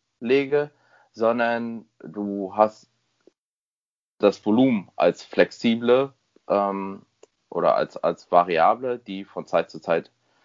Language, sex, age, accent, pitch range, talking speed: English, male, 30-49, German, 105-135 Hz, 105 wpm